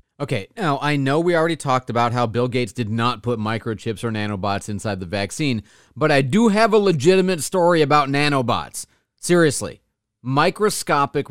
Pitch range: 115-160 Hz